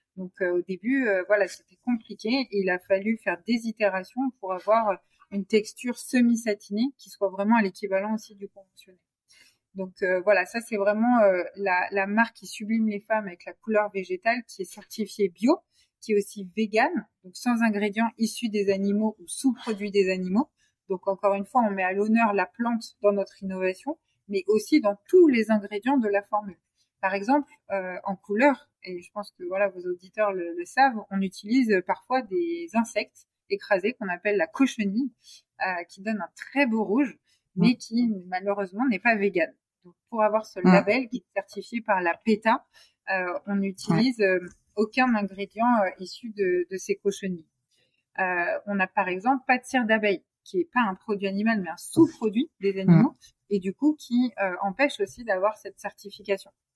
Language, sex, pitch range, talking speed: French, female, 195-235 Hz, 185 wpm